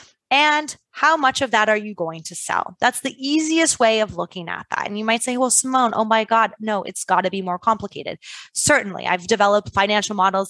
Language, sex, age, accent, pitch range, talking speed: English, female, 20-39, American, 195-245 Hz, 225 wpm